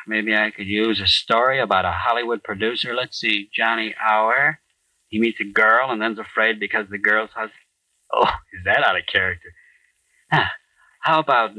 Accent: American